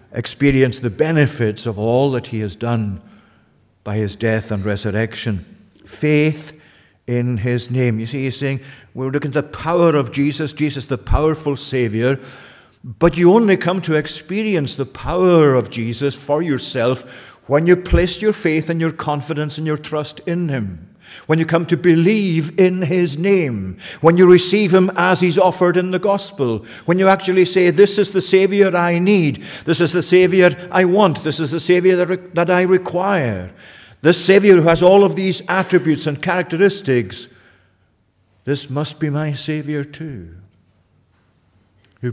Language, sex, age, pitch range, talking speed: English, male, 50-69, 115-175 Hz, 165 wpm